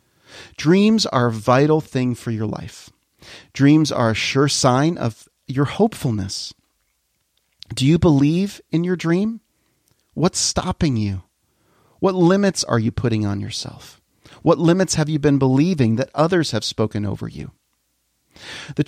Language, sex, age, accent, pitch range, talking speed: English, male, 40-59, American, 110-155 Hz, 145 wpm